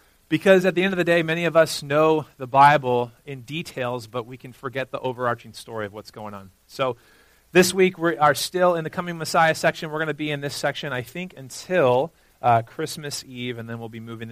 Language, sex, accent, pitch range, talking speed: English, male, American, 115-150 Hz, 230 wpm